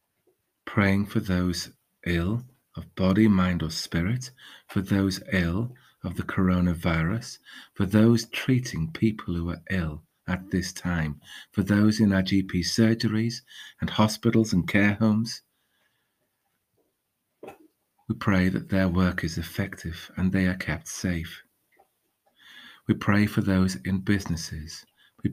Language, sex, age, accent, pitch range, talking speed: English, male, 40-59, British, 90-110 Hz, 130 wpm